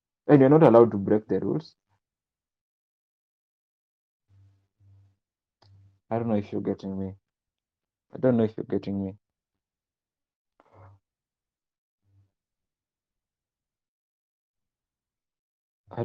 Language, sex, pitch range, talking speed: English, male, 100-135 Hz, 85 wpm